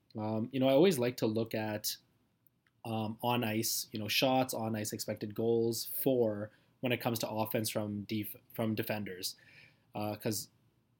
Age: 20-39